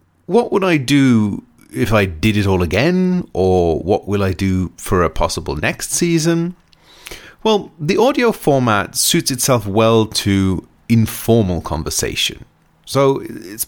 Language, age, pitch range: English, 30-49, 95-135 Hz